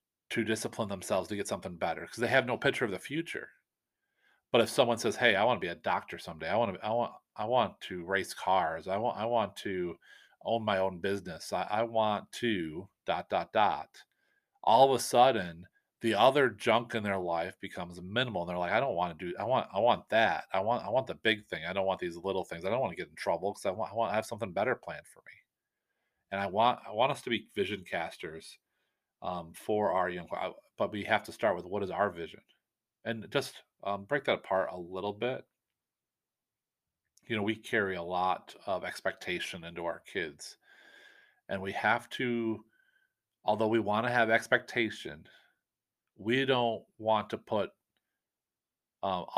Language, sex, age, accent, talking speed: English, male, 40-59, American, 210 wpm